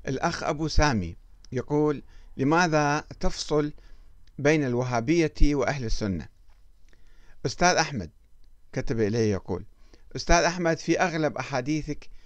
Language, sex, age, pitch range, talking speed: Arabic, male, 50-69, 110-155 Hz, 100 wpm